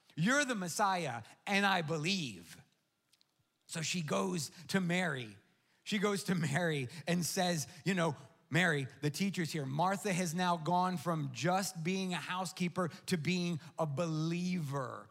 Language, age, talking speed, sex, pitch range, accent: English, 30-49, 145 wpm, male, 170-210 Hz, American